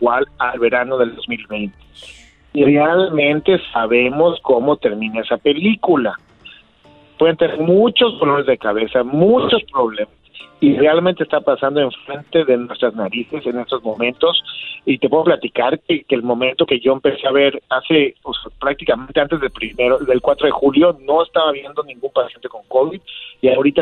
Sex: male